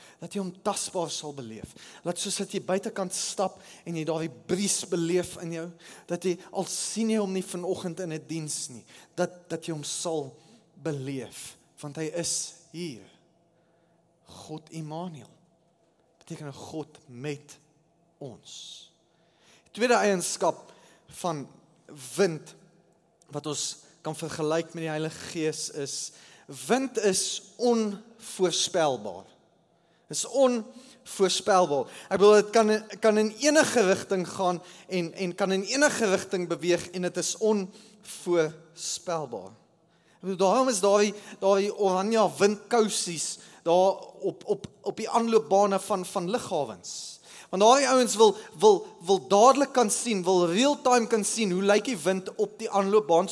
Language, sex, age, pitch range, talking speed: English, male, 30-49, 165-205 Hz, 135 wpm